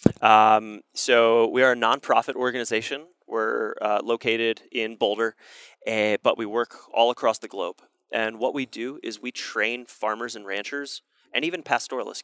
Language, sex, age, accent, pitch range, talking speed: English, male, 30-49, American, 105-120 Hz, 160 wpm